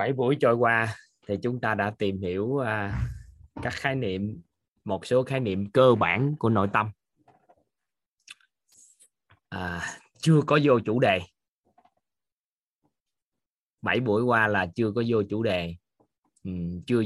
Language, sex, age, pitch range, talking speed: Vietnamese, male, 20-39, 90-110 Hz, 140 wpm